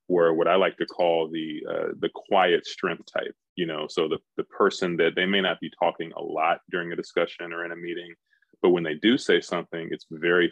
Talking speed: 235 wpm